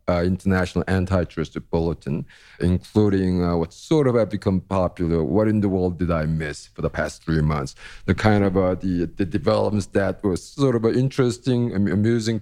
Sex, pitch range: male, 90-105 Hz